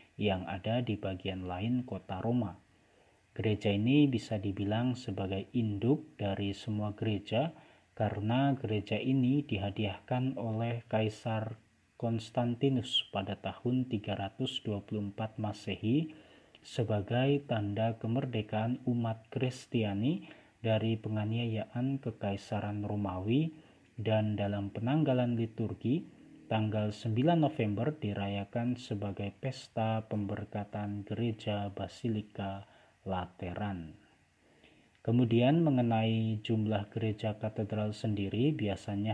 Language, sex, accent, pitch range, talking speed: Indonesian, male, native, 100-120 Hz, 85 wpm